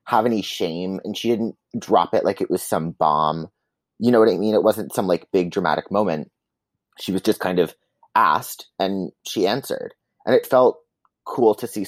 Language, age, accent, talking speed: English, 30-49, American, 200 wpm